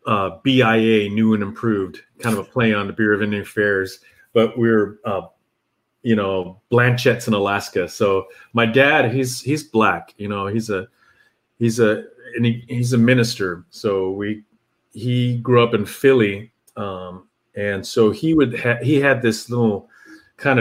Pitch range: 100-120 Hz